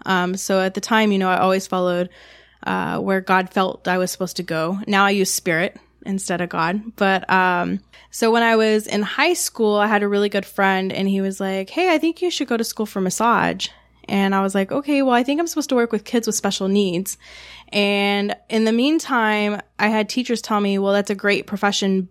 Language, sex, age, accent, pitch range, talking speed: English, female, 10-29, American, 185-220 Hz, 235 wpm